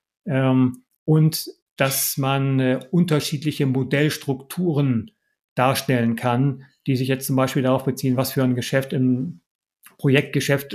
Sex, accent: male, German